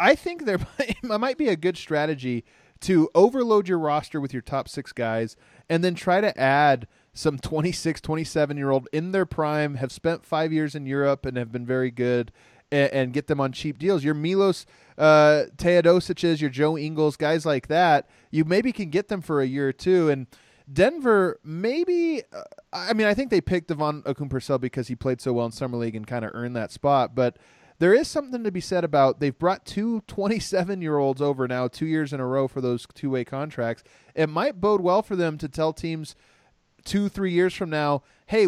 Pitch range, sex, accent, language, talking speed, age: 130-175 Hz, male, American, English, 200 wpm, 30-49